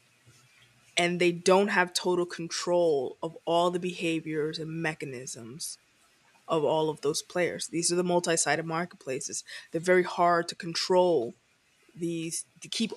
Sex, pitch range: female, 170-205 Hz